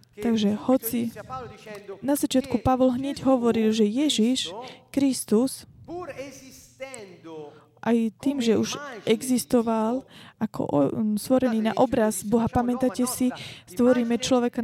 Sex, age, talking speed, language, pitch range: female, 20-39, 105 wpm, Slovak, 220-265 Hz